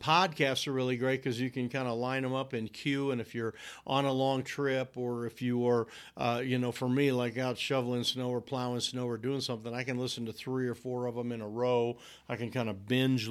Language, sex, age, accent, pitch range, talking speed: English, male, 50-69, American, 115-135 Hz, 255 wpm